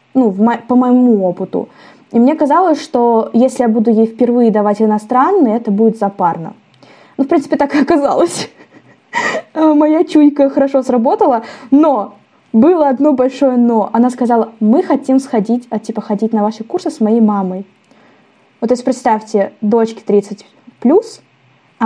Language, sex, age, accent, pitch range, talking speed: Russian, female, 10-29, native, 225-275 Hz, 145 wpm